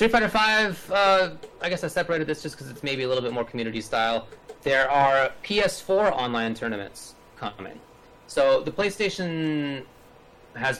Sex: male